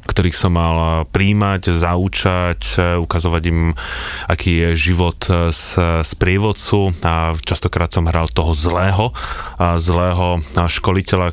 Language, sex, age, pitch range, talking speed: Slovak, male, 20-39, 85-95 Hz, 110 wpm